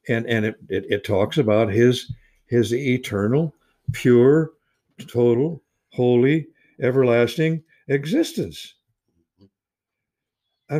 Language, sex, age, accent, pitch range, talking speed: English, male, 60-79, American, 110-160 Hz, 90 wpm